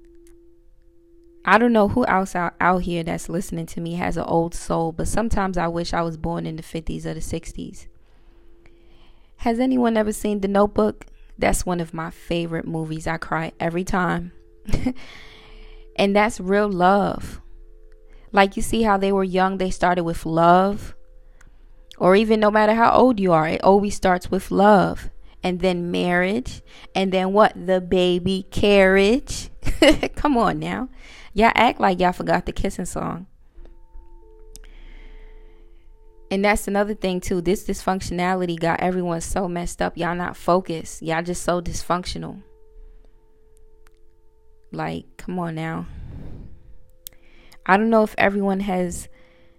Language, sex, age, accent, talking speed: English, female, 20-39, American, 150 wpm